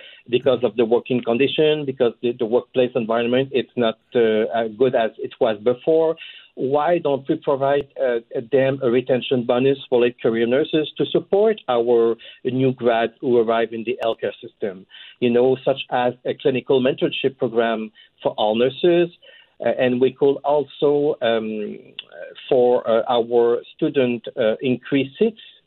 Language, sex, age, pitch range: English, male, 50-69, 120-165 Hz